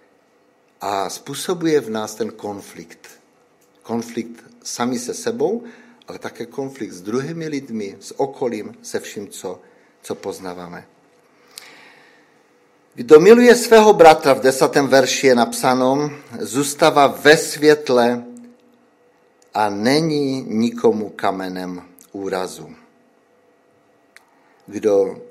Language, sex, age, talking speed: Czech, male, 50-69, 95 wpm